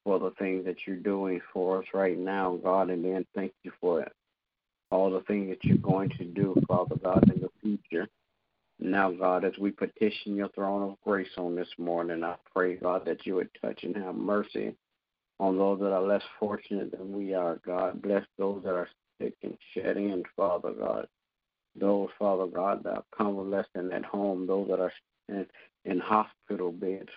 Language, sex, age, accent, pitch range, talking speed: English, male, 50-69, American, 95-100 Hz, 190 wpm